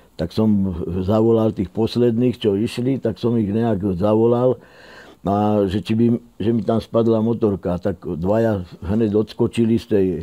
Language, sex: Czech, male